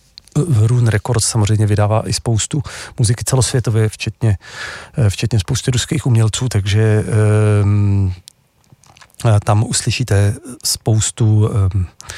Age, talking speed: 40-59, 90 wpm